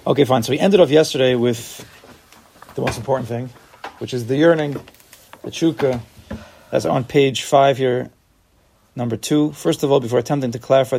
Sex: male